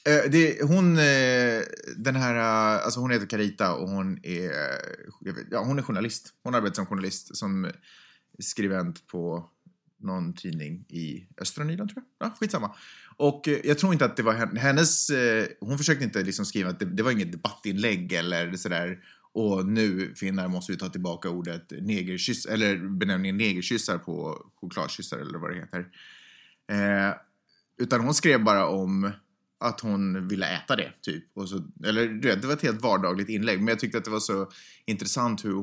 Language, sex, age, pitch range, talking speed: Swedish, male, 30-49, 95-145 Hz, 175 wpm